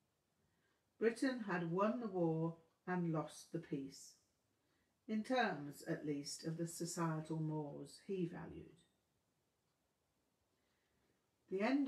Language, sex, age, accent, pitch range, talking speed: English, female, 50-69, British, 165-200 Hz, 105 wpm